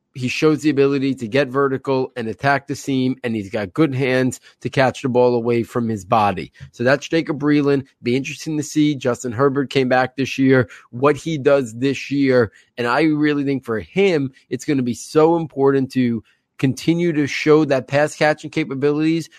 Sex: male